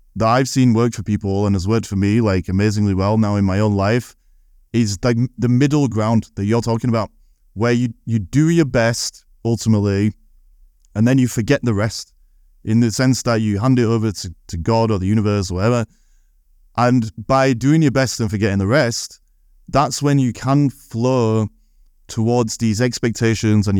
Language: English